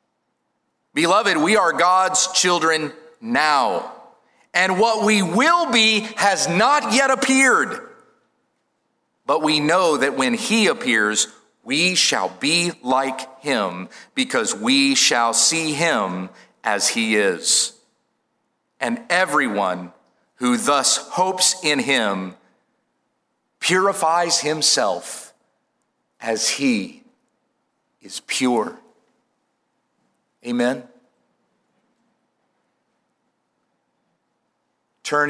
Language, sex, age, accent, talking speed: English, male, 40-59, American, 85 wpm